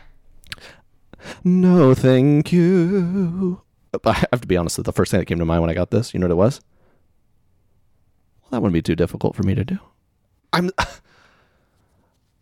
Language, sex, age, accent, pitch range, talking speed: English, male, 30-49, American, 95-135 Hz, 170 wpm